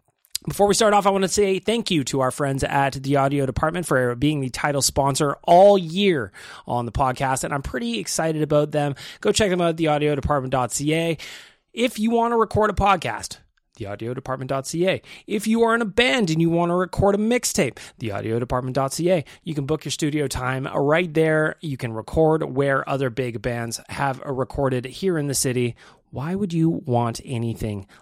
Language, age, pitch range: English, 20-39, 125-170 Hz